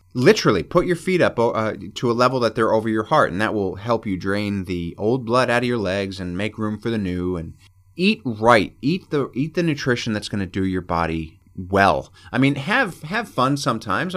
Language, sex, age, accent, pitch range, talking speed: English, male, 30-49, American, 95-125 Hz, 230 wpm